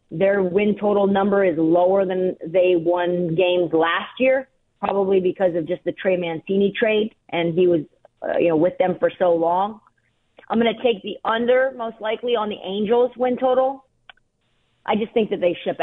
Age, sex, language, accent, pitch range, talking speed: 40-59, female, English, American, 160-200 Hz, 190 wpm